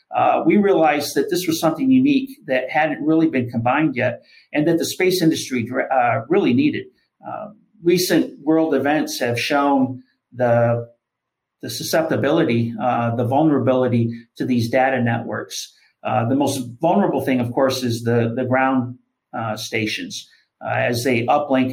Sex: male